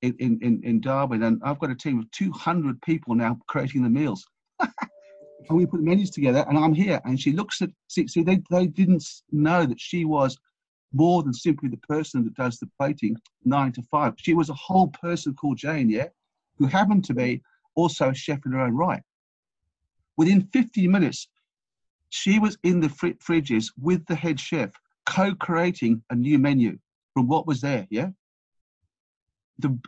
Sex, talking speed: male, 185 wpm